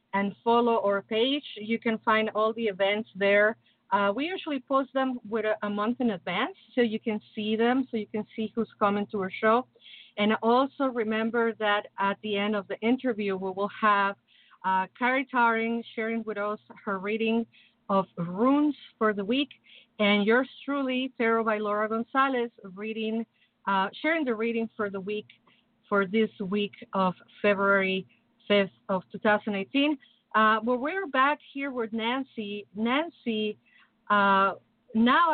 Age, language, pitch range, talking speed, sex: 40-59, English, 210-250 Hz, 160 wpm, female